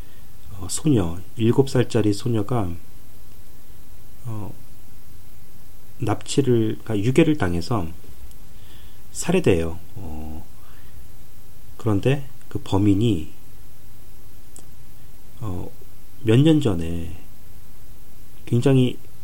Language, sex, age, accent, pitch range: Korean, male, 30-49, native, 95-120 Hz